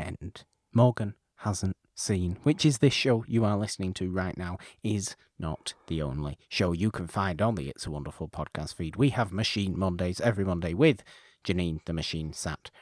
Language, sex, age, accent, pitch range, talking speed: English, male, 30-49, British, 90-120 Hz, 185 wpm